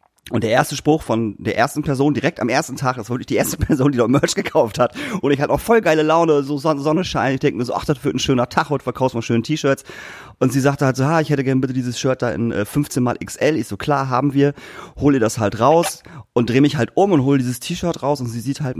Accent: German